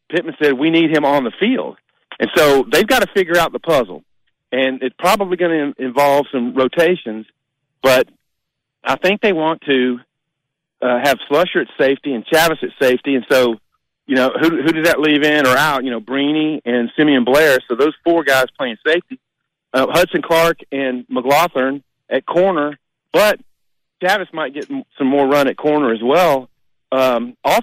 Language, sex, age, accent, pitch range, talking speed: English, male, 40-59, American, 130-165 Hz, 180 wpm